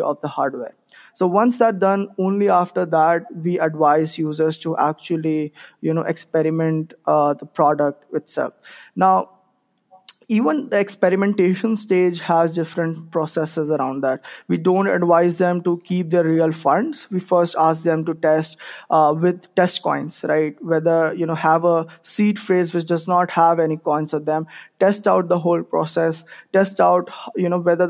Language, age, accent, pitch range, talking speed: English, 20-39, Indian, 160-180 Hz, 160 wpm